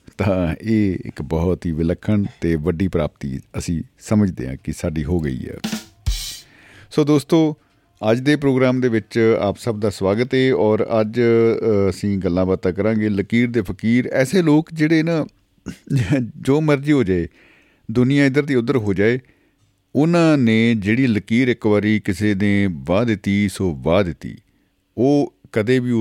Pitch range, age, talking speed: 95-125 Hz, 50-69, 155 wpm